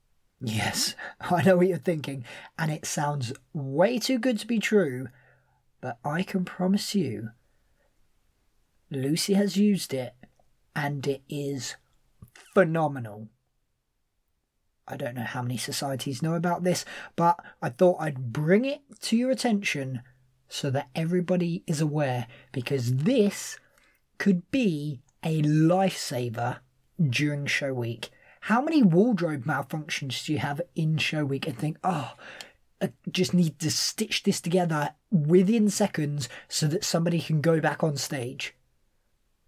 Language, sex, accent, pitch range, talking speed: English, male, British, 130-180 Hz, 135 wpm